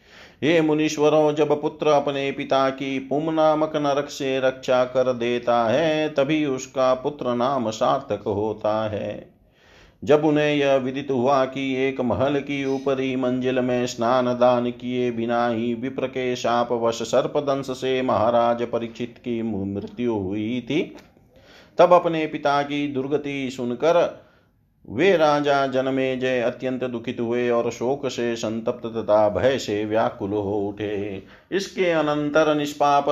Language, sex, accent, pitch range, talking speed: Hindi, male, native, 120-140 Hz, 130 wpm